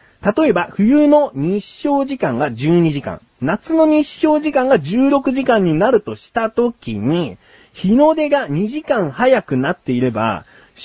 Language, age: Japanese, 40-59